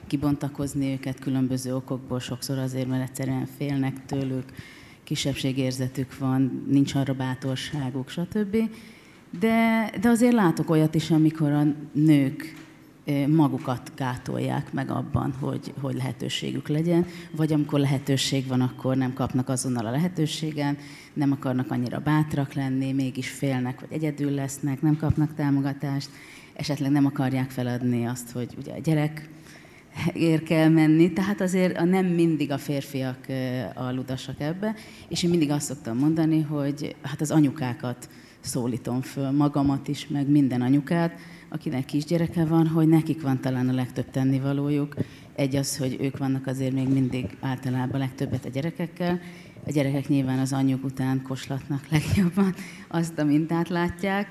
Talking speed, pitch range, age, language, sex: 140 wpm, 130-155 Hz, 30-49, Hungarian, female